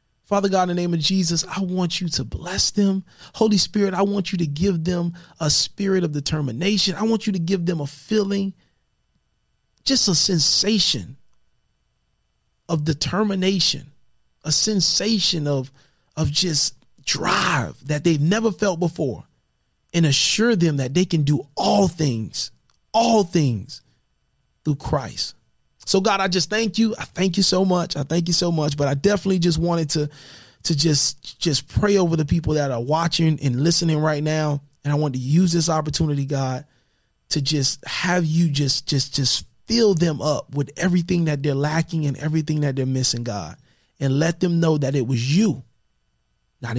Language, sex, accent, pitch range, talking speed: English, male, American, 140-185 Hz, 175 wpm